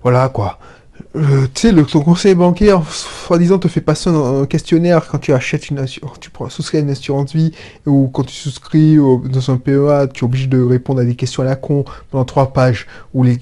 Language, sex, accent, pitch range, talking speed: French, male, French, 130-180 Hz, 215 wpm